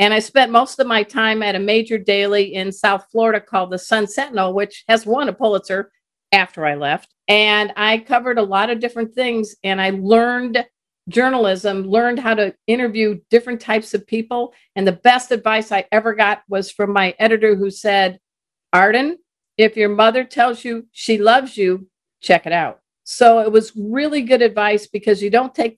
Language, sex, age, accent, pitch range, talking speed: English, female, 50-69, American, 200-235 Hz, 190 wpm